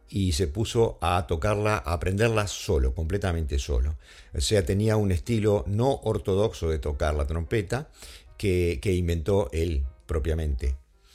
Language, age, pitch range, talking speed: English, 50-69, 80-110 Hz, 140 wpm